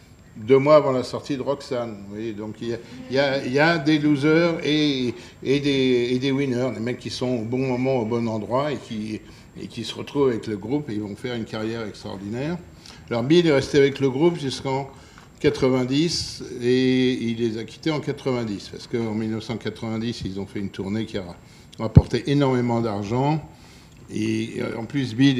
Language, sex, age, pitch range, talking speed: French, male, 60-79, 105-130 Hz, 190 wpm